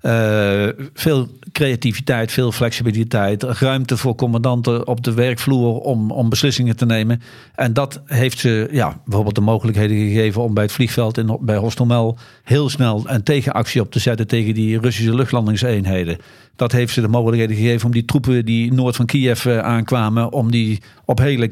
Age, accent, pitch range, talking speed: 50-69, Dutch, 115-135 Hz, 170 wpm